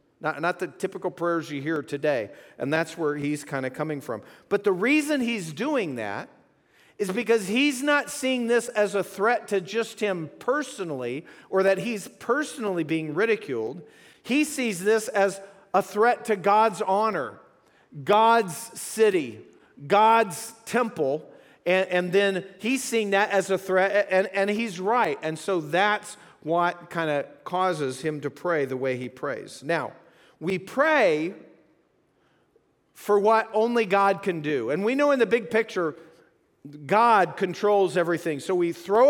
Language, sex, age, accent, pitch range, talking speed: English, male, 40-59, American, 175-225 Hz, 160 wpm